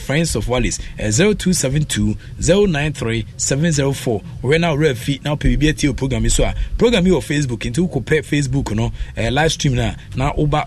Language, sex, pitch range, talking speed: English, male, 110-150 Hz, 185 wpm